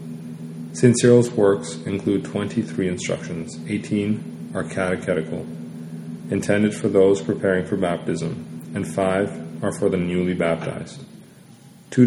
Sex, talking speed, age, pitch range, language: male, 115 wpm, 30-49, 90-105 Hz, English